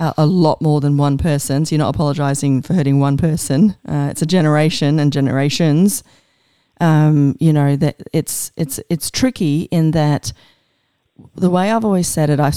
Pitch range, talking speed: 140-160 Hz, 175 wpm